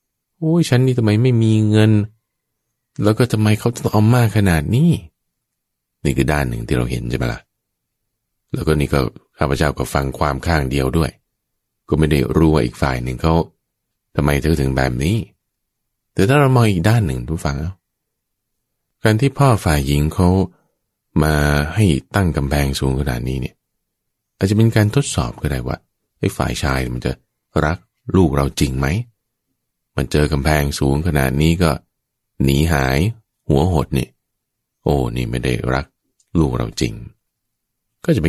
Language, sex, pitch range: English, male, 70-110 Hz